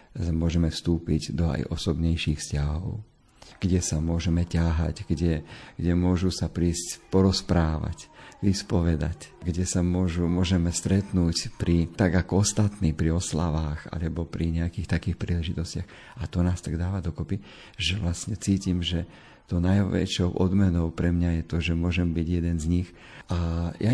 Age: 50-69